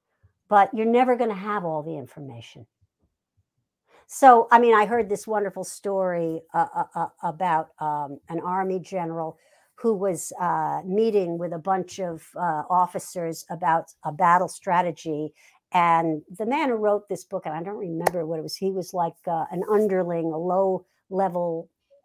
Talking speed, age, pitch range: 165 wpm, 60-79, 170-210 Hz